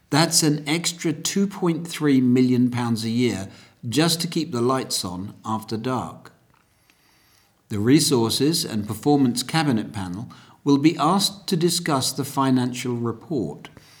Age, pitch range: 50-69, 115-155 Hz